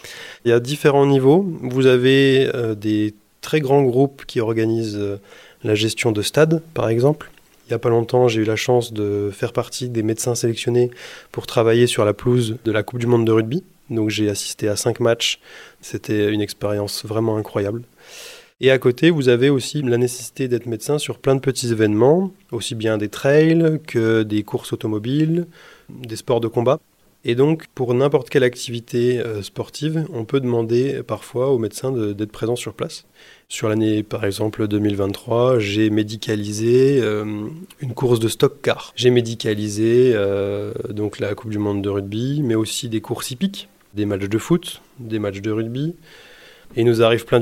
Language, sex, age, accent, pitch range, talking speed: French, male, 20-39, French, 110-130 Hz, 185 wpm